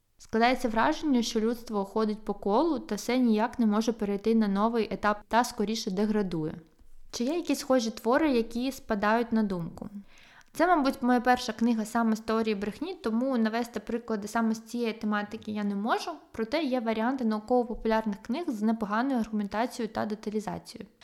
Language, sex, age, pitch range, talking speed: Ukrainian, female, 20-39, 215-255 Hz, 165 wpm